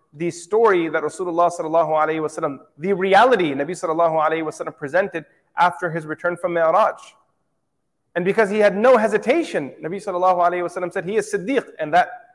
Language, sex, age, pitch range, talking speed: English, male, 30-49, 155-200 Hz, 150 wpm